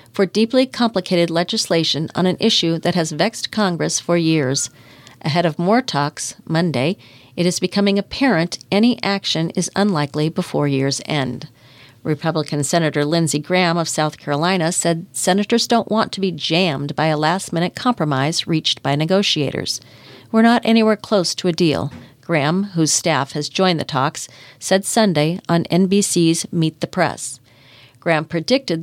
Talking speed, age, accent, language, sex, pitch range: 150 wpm, 50-69, American, English, female, 150-200 Hz